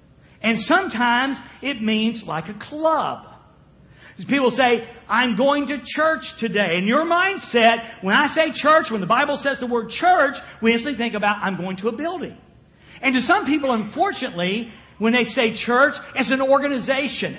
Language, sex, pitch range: English, male, 220-295 Hz